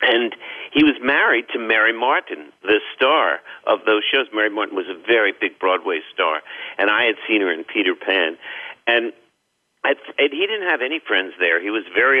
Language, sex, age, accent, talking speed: English, male, 50-69, American, 190 wpm